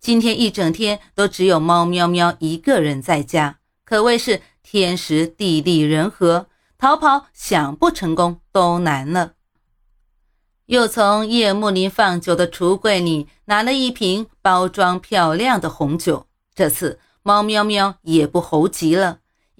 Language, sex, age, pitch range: Chinese, female, 30-49, 165-210 Hz